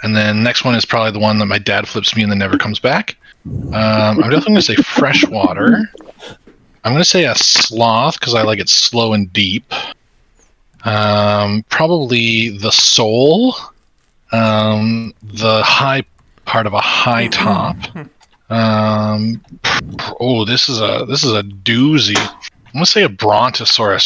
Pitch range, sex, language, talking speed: 110-130 Hz, male, English, 155 wpm